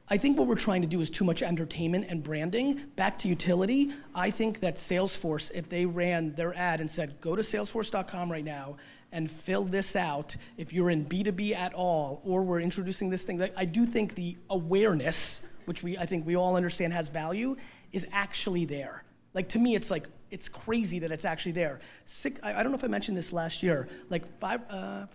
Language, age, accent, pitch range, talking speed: English, 30-49, American, 170-200 Hz, 215 wpm